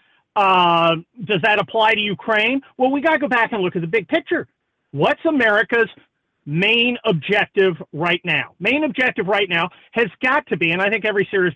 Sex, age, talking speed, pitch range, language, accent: male, 40-59, 190 wpm, 180-245 Hz, English, American